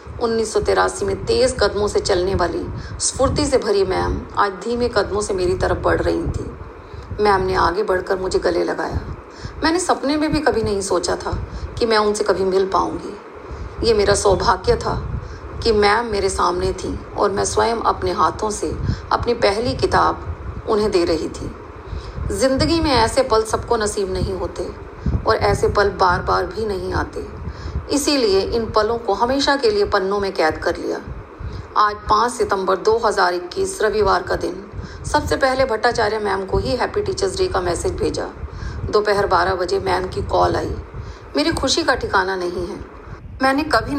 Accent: Indian